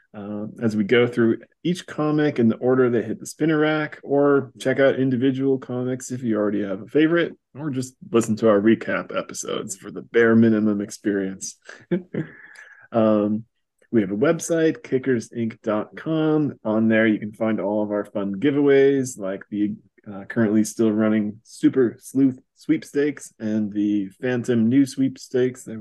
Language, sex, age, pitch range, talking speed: English, male, 20-39, 105-135 Hz, 160 wpm